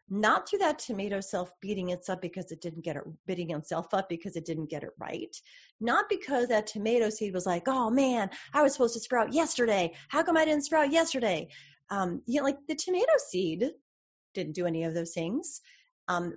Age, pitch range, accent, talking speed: 30-49, 190-270 Hz, American, 210 wpm